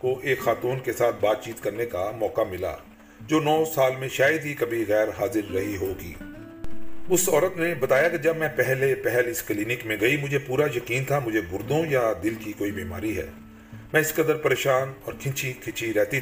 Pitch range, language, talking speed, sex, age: 110-140 Hz, Urdu, 205 wpm, male, 40-59